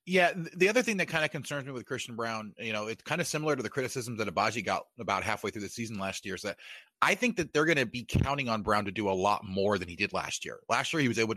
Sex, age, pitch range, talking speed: male, 30-49, 110-140 Hz, 305 wpm